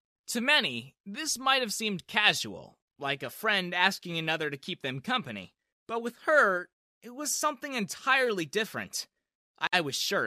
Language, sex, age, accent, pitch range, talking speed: English, male, 30-49, American, 130-220 Hz, 160 wpm